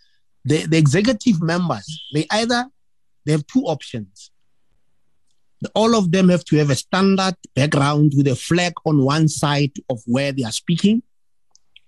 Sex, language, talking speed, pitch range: male, English, 150 wpm, 125-160 Hz